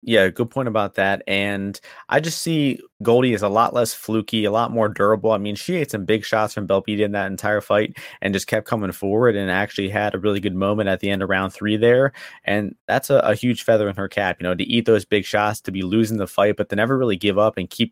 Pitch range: 100-120 Hz